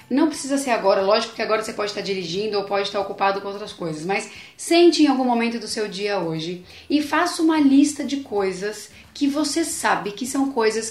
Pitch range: 210-280 Hz